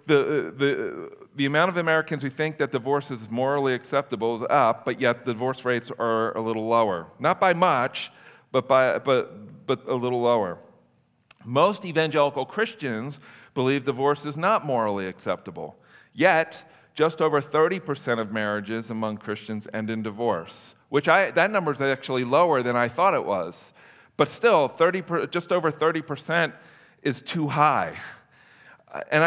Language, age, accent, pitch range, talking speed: English, 50-69, American, 115-155 Hz, 155 wpm